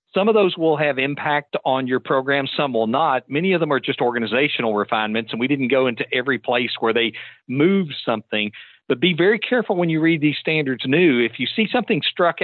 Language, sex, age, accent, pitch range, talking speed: English, male, 50-69, American, 120-160 Hz, 215 wpm